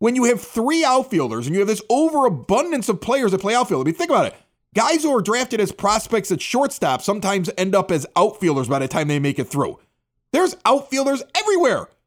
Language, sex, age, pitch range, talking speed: English, male, 30-49, 175-245 Hz, 215 wpm